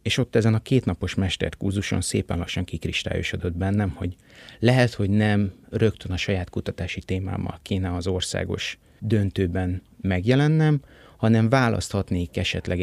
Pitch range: 90-110 Hz